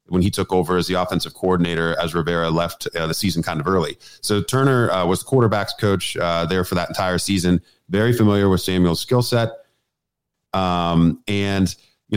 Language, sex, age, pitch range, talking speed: English, male, 30-49, 85-105 Hz, 190 wpm